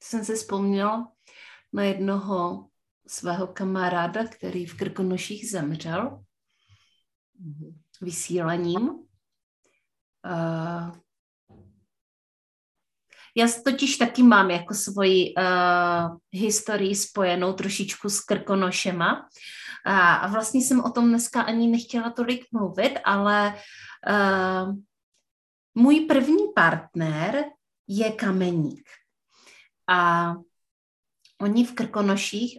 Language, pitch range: Czech, 180-230 Hz